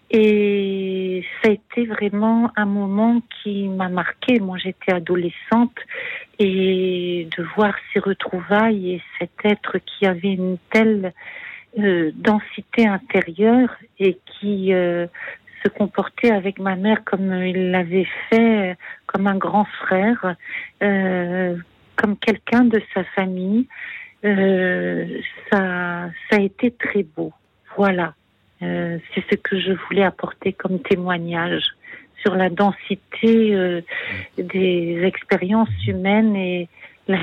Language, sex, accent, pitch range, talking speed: French, female, French, 180-215 Hz, 120 wpm